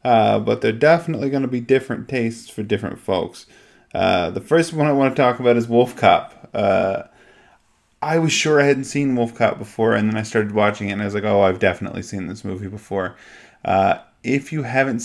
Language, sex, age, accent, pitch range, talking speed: English, male, 20-39, American, 95-120 Hz, 220 wpm